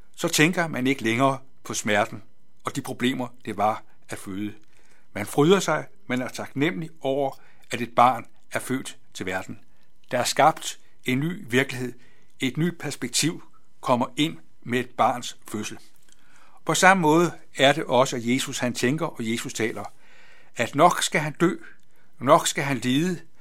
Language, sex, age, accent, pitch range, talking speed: Danish, male, 60-79, native, 120-155 Hz, 165 wpm